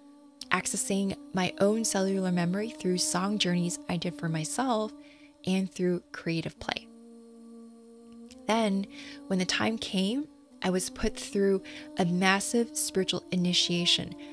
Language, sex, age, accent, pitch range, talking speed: English, female, 20-39, American, 180-255 Hz, 120 wpm